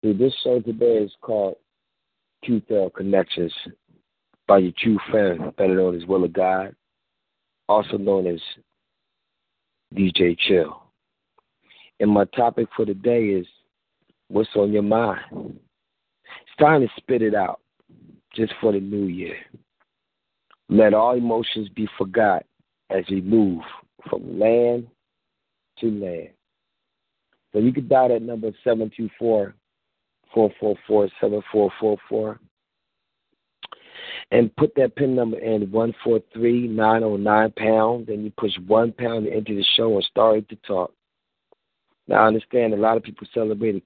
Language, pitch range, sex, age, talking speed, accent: English, 100-115 Hz, male, 40-59, 135 wpm, American